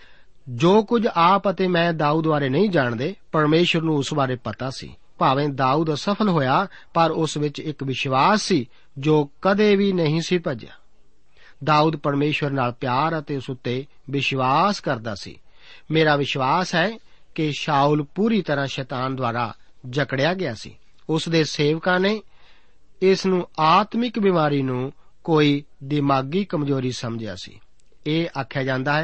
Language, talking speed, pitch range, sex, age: Punjabi, 105 wpm, 135-180 Hz, male, 50-69